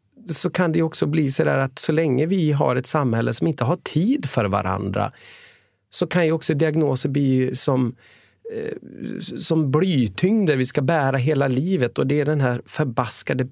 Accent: Swedish